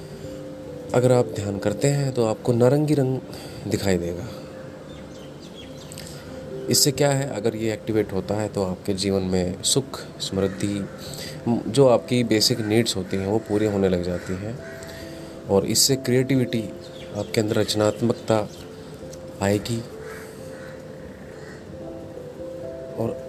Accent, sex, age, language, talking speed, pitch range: native, male, 30-49, Hindi, 115 wpm, 100-125 Hz